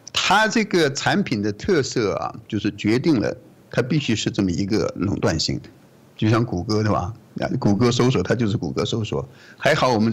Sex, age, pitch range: male, 50-69, 105-125 Hz